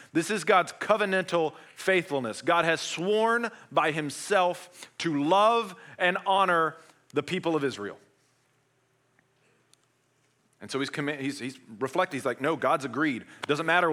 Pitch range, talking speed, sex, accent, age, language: 130-180 Hz, 140 wpm, male, American, 40-59, English